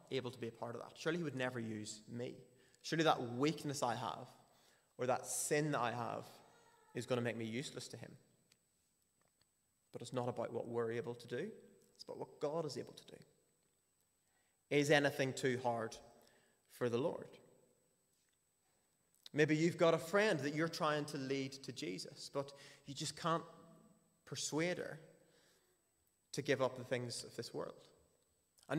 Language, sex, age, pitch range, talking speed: English, male, 20-39, 125-165 Hz, 170 wpm